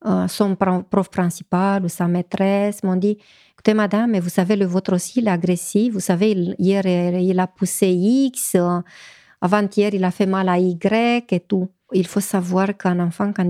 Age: 40-59